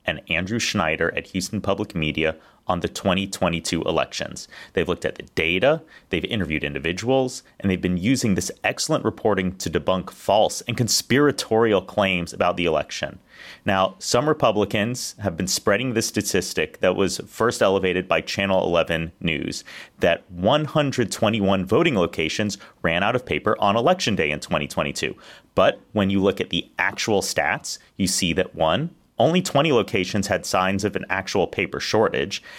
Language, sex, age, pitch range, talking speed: English, male, 30-49, 95-125 Hz, 160 wpm